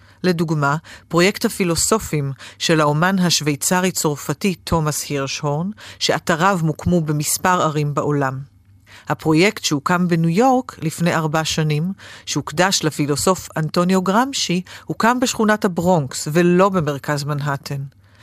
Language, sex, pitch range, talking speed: Hebrew, female, 150-190 Hz, 100 wpm